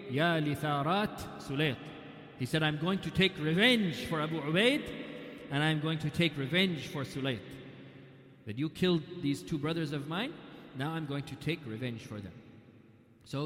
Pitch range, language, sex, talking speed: 130-170 Hz, English, male, 155 wpm